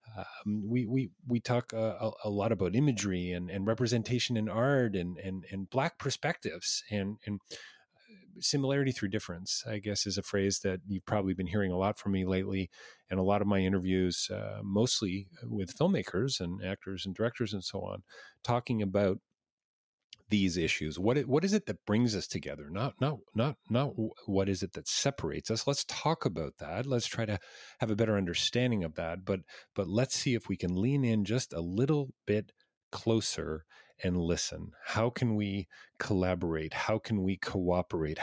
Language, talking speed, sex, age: English, 185 wpm, male, 40-59